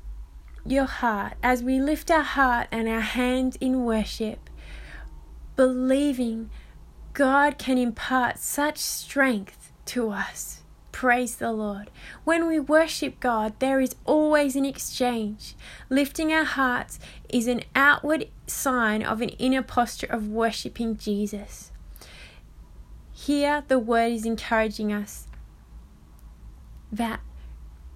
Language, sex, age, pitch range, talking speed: English, female, 20-39, 205-255 Hz, 115 wpm